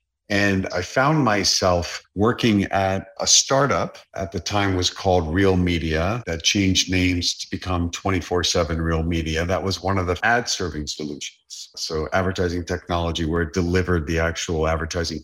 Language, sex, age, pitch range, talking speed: English, male, 50-69, 85-105 Hz, 165 wpm